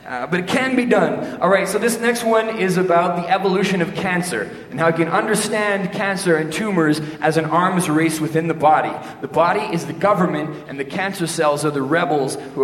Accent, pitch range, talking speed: American, 125-165 Hz, 215 wpm